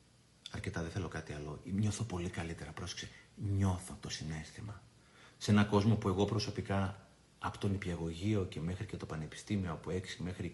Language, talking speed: Greek, 170 wpm